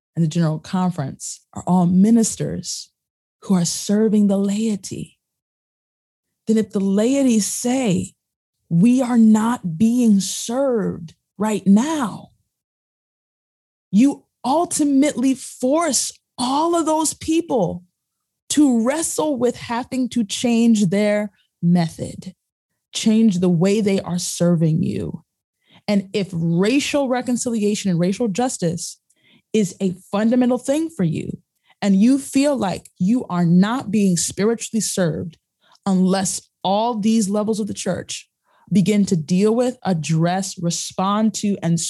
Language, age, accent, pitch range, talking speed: English, 20-39, American, 180-235 Hz, 120 wpm